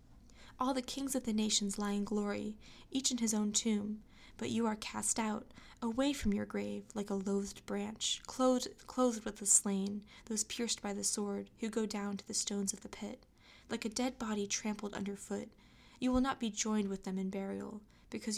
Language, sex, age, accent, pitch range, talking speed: English, female, 20-39, American, 200-235 Hz, 200 wpm